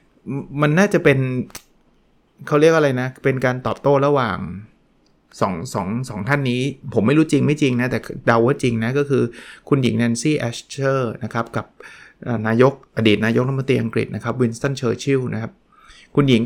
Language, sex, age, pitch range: Thai, male, 20-39, 110-135 Hz